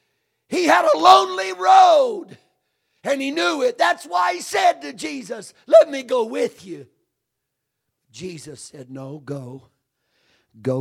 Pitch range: 110-145 Hz